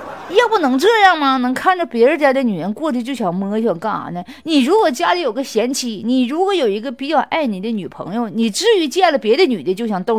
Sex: female